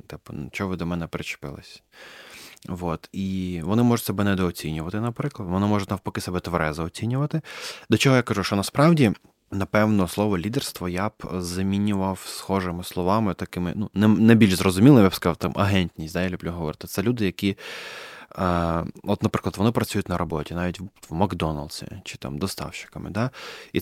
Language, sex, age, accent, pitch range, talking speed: Ukrainian, male, 20-39, native, 90-110 Hz, 165 wpm